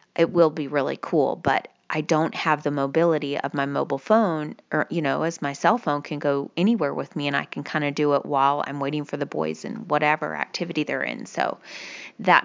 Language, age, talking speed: English, 30-49, 225 wpm